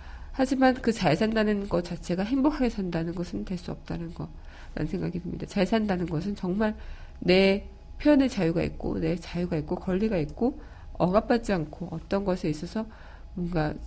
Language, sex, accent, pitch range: Korean, female, native, 150-200 Hz